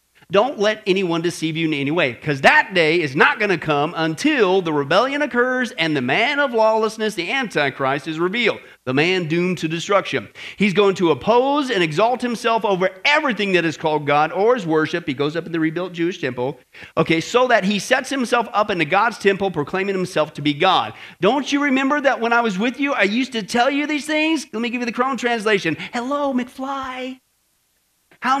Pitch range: 175-270 Hz